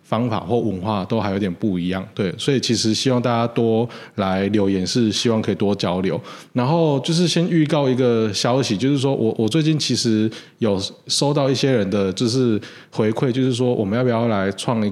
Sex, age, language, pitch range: male, 20-39, Chinese, 100-125 Hz